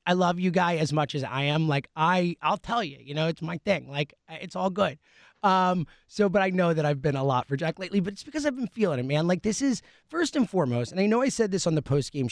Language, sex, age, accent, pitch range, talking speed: English, male, 30-49, American, 155-205 Hz, 290 wpm